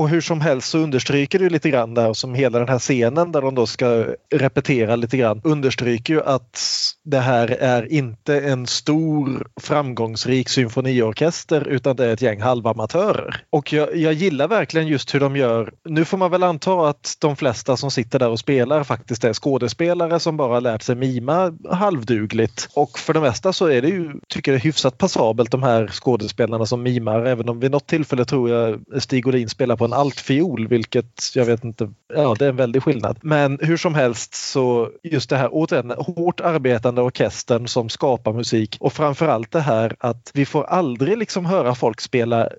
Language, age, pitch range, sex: Swedish, 30-49, 120-155 Hz, male